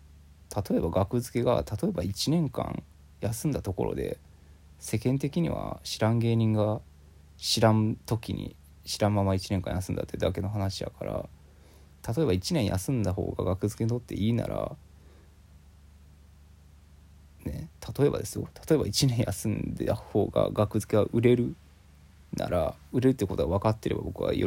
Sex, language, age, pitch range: male, Japanese, 20-39, 75-105 Hz